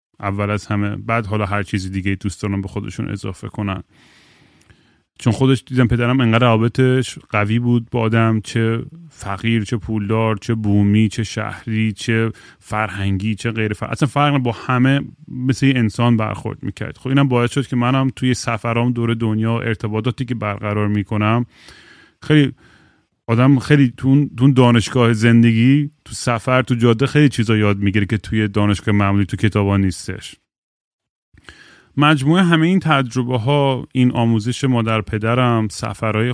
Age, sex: 30-49, male